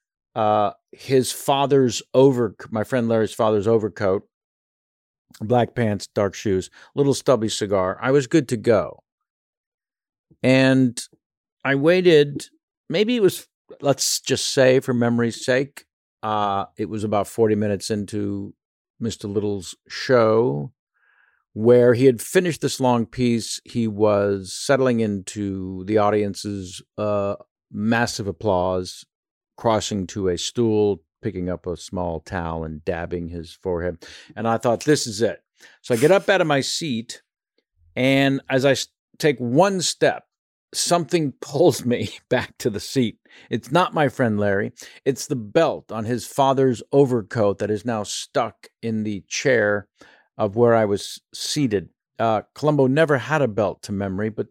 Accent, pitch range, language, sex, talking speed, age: American, 100-130 Hz, English, male, 145 wpm, 50-69